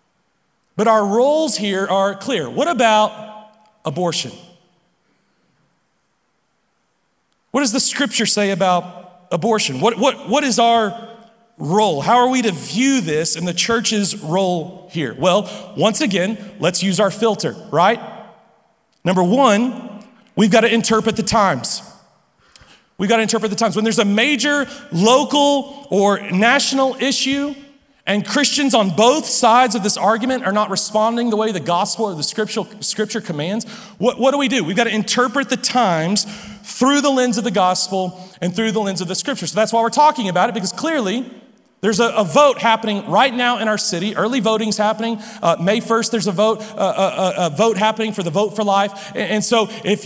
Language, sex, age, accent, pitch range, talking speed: English, male, 40-59, American, 200-245 Hz, 180 wpm